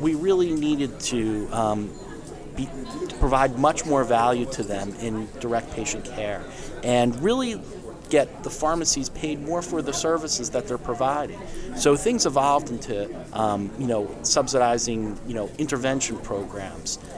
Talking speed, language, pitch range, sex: 145 wpm, English, 120-155 Hz, male